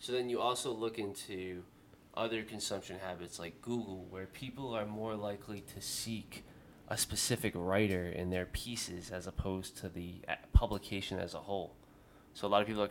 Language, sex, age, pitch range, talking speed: English, male, 20-39, 85-105 Hz, 175 wpm